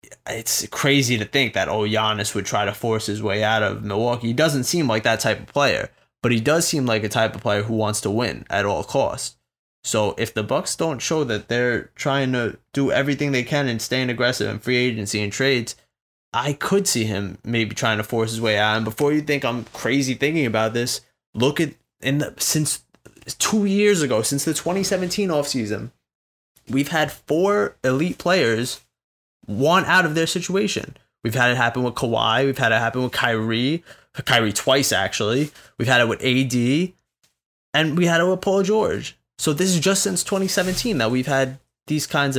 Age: 20-39